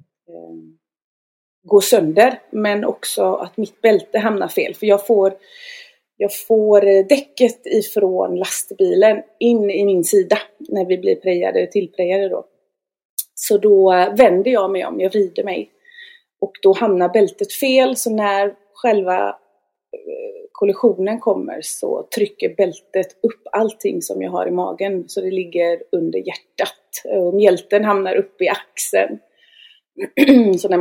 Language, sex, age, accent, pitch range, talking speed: Swedish, female, 30-49, native, 180-245 Hz, 135 wpm